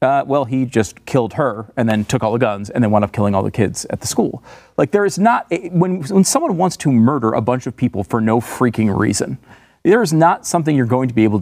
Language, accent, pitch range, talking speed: English, American, 120-185 Hz, 270 wpm